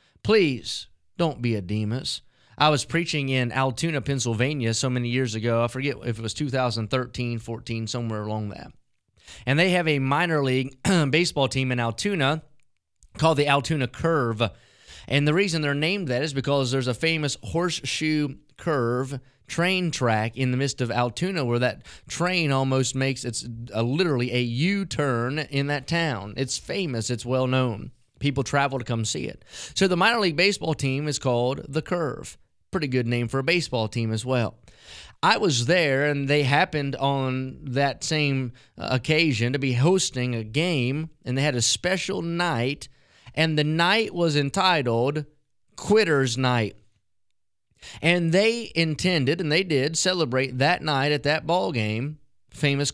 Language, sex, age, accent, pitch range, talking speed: English, male, 30-49, American, 120-155 Hz, 160 wpm